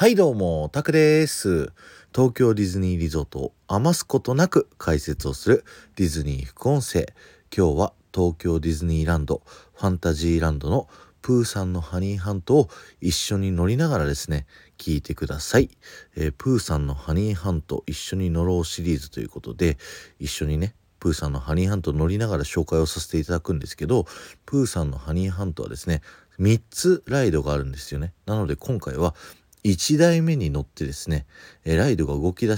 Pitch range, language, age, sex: 75-105 Hz, Japanese, 40-59, male